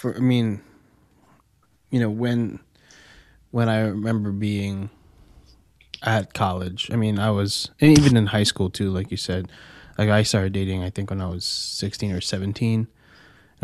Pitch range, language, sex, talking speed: 100-120 Hz, English, male, 165 wpm